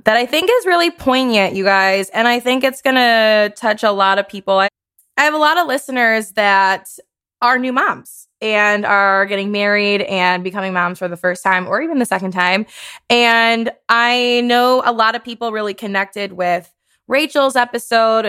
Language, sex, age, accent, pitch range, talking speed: English, female, 20-39, American, 190-240 Hz, 185 wpm